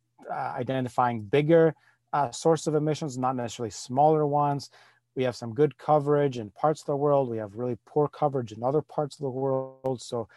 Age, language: 30-49, English